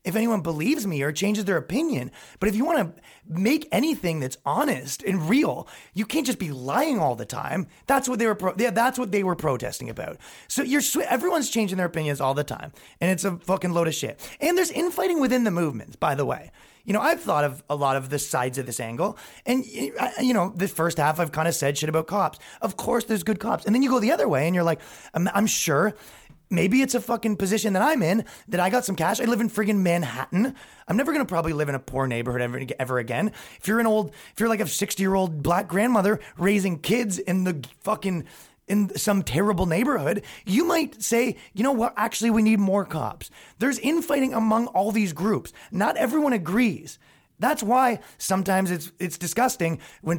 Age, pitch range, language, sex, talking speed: 30-49, 160-240 Hz, English, male, 225 wpm